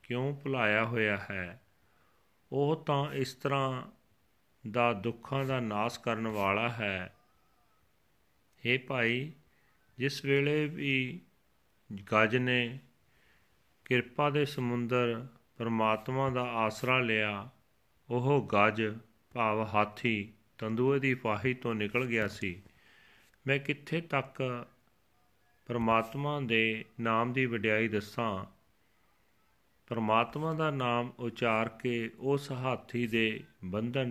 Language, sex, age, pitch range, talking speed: Punjabi, male, 40-59, 110-130 Hz, 95 wpm